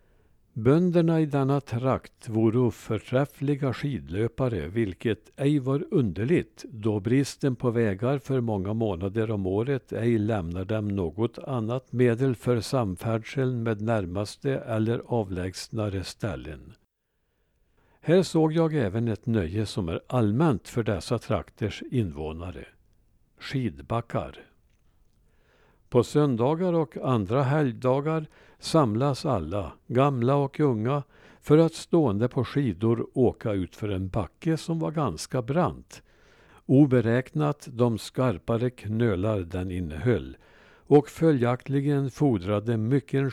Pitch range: 105-140 Hz